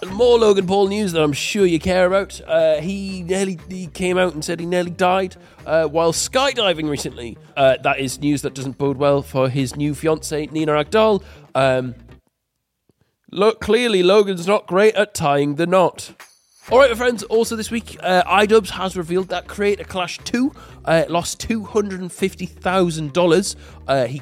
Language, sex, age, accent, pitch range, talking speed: English, male, 30-49, British, 145-210 Hz, 170 wpm